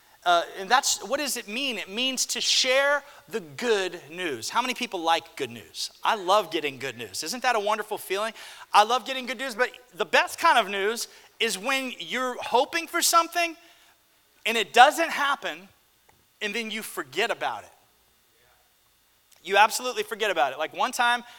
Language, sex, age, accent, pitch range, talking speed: English, male, 30-49, American, 210-290 Hz, 180 wpm